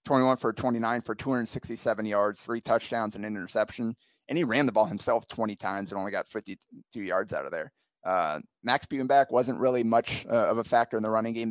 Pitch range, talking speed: 110-125 Hz, 215 wpm